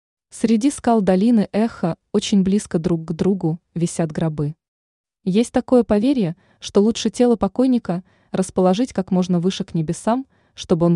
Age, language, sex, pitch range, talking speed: 20-39, Russian, female, 170-220 Hz, 140 wpm